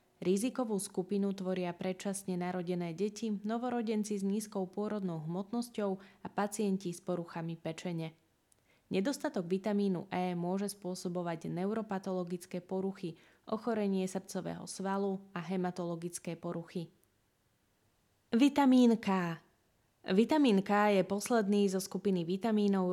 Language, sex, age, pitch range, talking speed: Slovak, female, 20-39, 175-205 Hz, 100 wpm